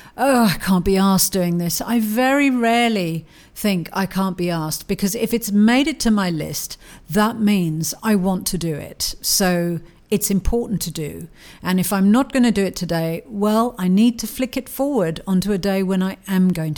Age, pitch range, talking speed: 50-69, 180-235 Hz, 205 wpm